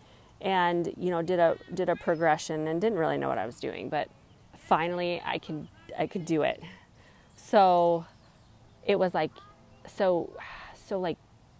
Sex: female